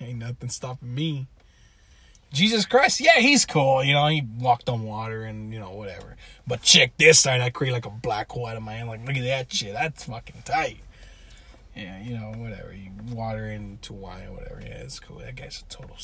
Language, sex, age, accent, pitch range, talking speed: English, male, 20-39, American, 115-165 Hz, 215 wpm